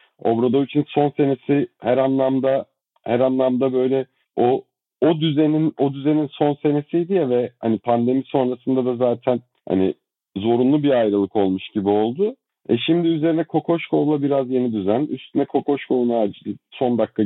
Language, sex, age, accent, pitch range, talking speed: Turkish, male, 50-69, native, 105-140 Hz, 145 wpm